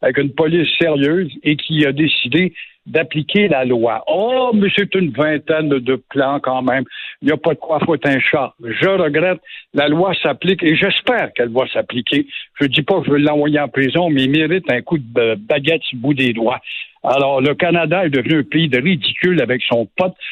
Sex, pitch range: male, 145-190 Hz